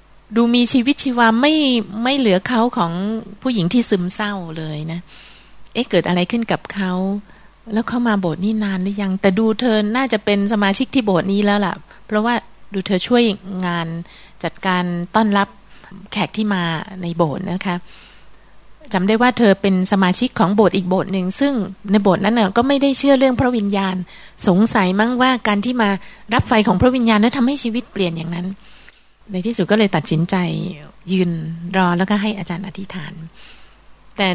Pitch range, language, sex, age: 185-220 Hz, Thai, female, 30-49